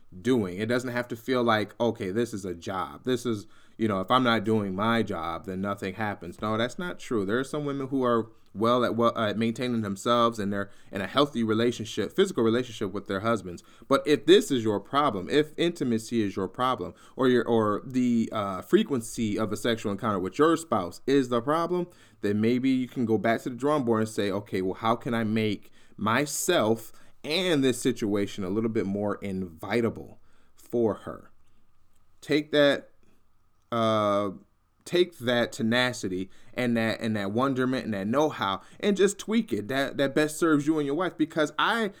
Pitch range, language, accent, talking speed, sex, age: 105-130 Hz, English, American, 195 wpm, male, 20-39